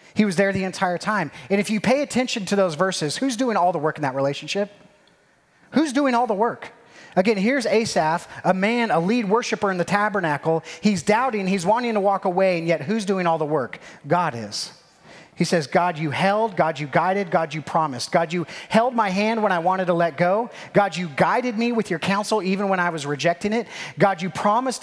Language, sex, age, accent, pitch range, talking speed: English, male, 30-49, American, 145-200 Hz, 220 wpm